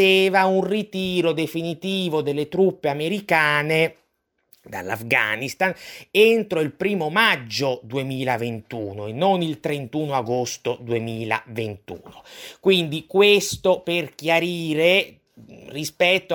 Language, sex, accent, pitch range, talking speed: Italian, male, native, 145-185 Hz, 85 wpm